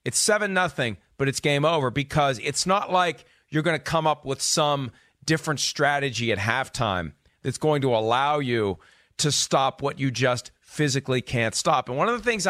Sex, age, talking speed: male, 40-59, 185 wpm